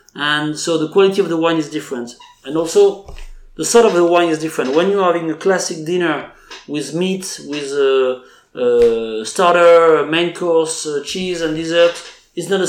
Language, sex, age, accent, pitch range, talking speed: English, male, 30-49, French, 150-180 Hz, 180 wpm